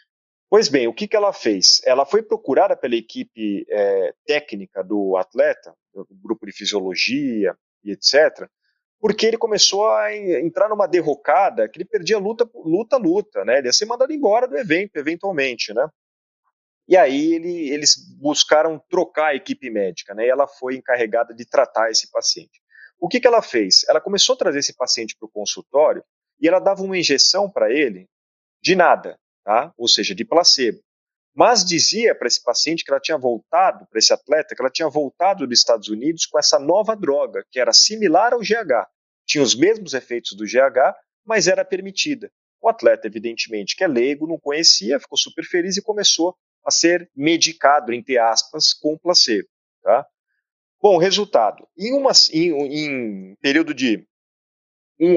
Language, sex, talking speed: Portuguese, male, 170 wpm